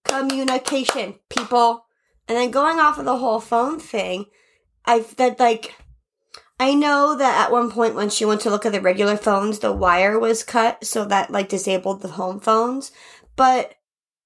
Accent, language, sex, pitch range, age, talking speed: American, English, female, 210-265 Hz, 30-49, 175 wpm